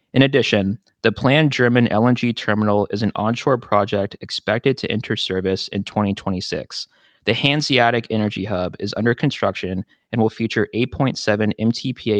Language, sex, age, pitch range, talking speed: English, male, 20-39, 100-120 Hz, 145 wpm